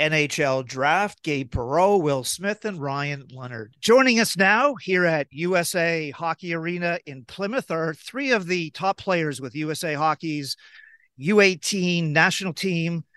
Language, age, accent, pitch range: English, 50-69, American, 150-195 Hz